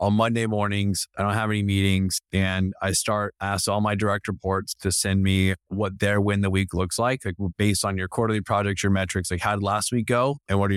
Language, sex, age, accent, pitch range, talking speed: English, male, 20-39, American, 95-115 Hz, 240 wpm